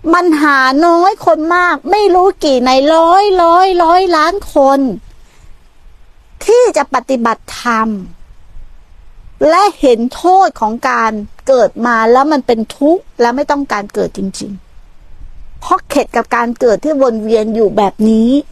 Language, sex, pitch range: Thai, female, 180-280 Hz